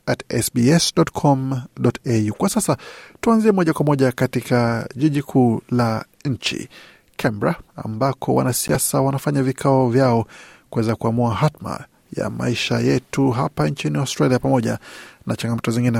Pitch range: 120-150 Hz